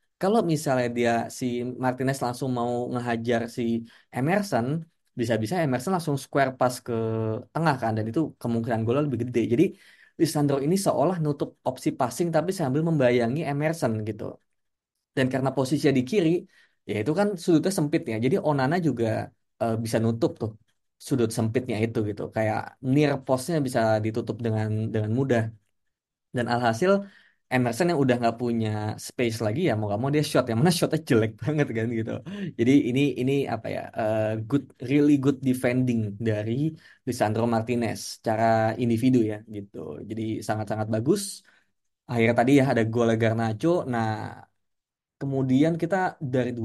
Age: 20-39